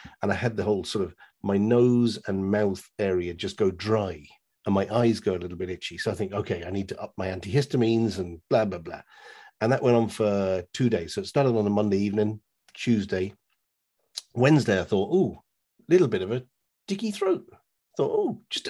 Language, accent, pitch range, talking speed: English, British, 100-140 Hz, 210 wpm